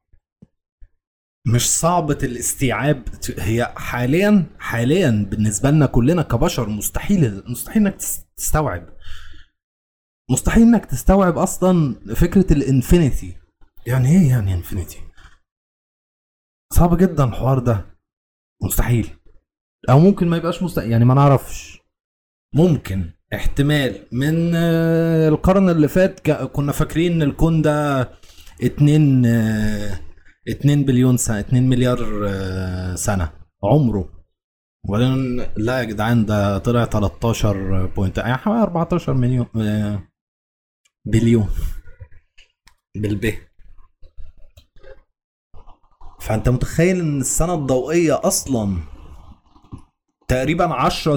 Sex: male